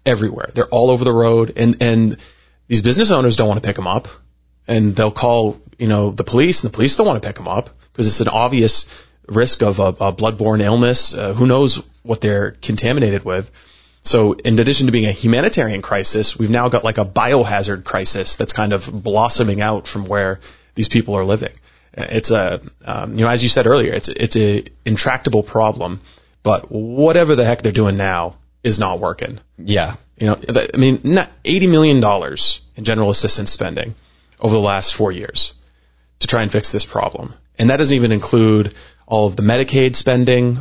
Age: 30-49